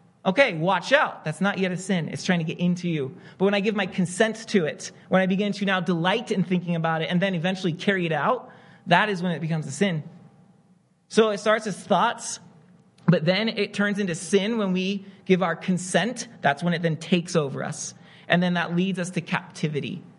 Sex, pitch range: male, 170-225 Hz